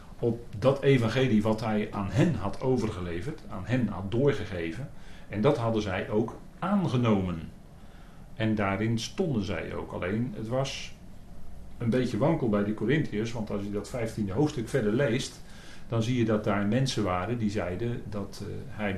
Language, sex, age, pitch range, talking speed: Dutch, male, 40-59, 105-130 Hz, 165 wpm